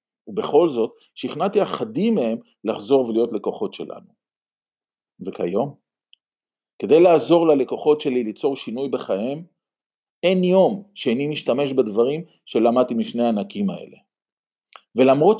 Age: 40-59